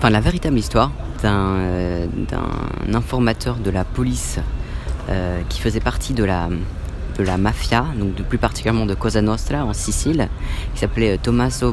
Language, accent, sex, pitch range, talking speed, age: French, French, female, 85-115 Hz, 160 wpm, 30-49